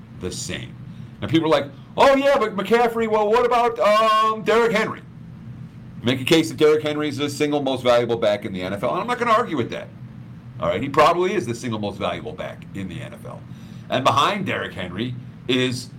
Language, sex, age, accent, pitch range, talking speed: English, male, 50-69, American, 120-185 Hz, 210 wpm